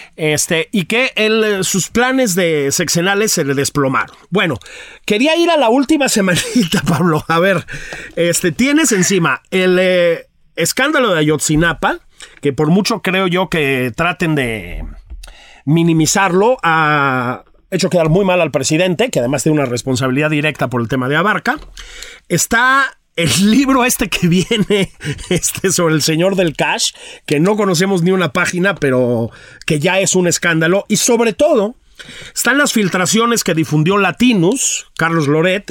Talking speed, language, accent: 155 wpm, Spanish, Mexican